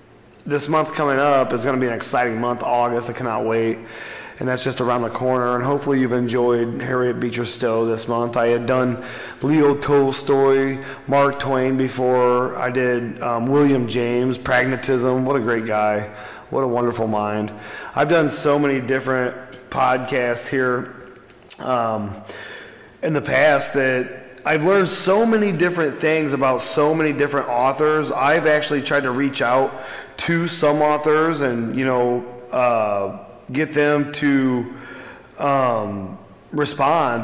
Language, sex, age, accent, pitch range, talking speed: English, male, 30-49, American, 120-140 Hz, 150 wpm